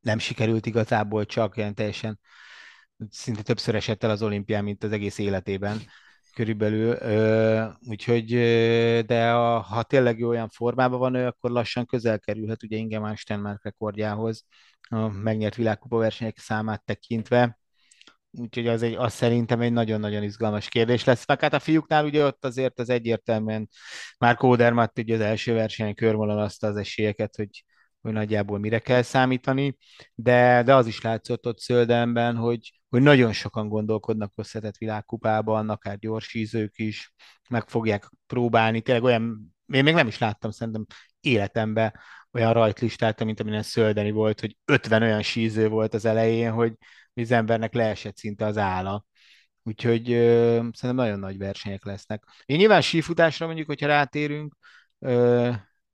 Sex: male